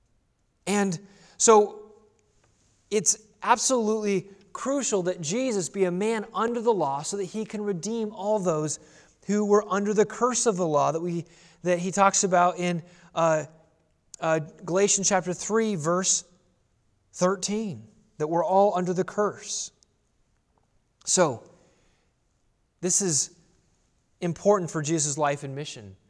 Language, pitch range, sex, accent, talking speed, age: English, 145-205 Hz, male, American, 130 wpm, 30-49